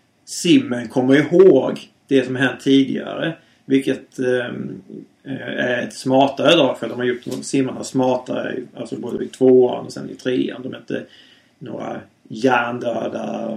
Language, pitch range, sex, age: Swedish, 120-135 Hz, male, 30-49